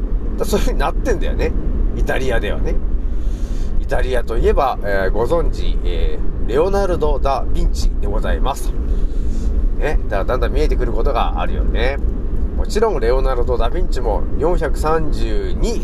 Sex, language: male, Japanese